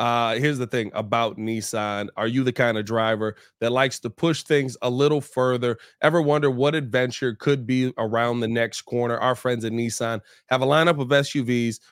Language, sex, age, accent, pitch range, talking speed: English, male, 20-39, American, 120-145 Hz, 195 wpm